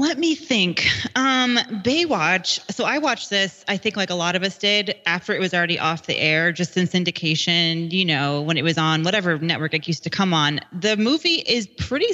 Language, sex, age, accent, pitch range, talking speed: English, female, 20-39, American, 160-195 Hz, 215 wpm